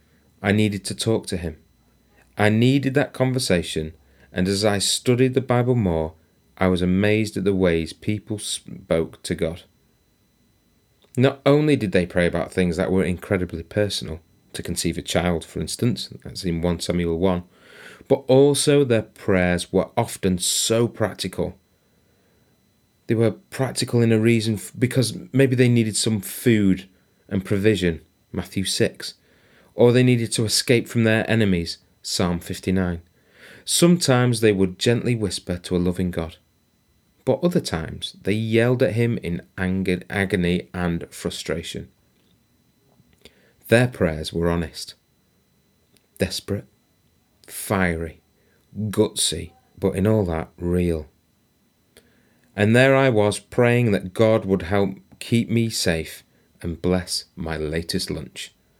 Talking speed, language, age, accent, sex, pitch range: 135 wpm, English, 30-49, British, male, 85-115 Hz